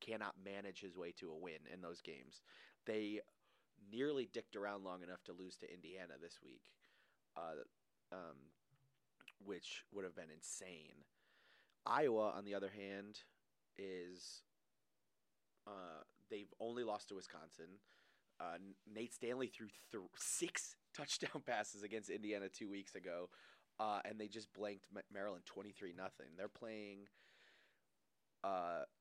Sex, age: male, 30-49